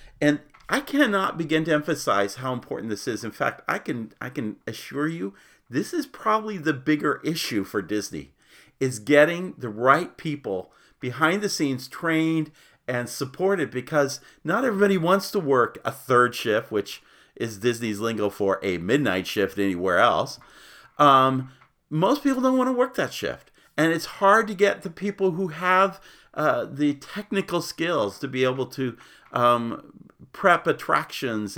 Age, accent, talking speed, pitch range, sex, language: 40-59, American, 160 wpm, 120-190 Hz, male, English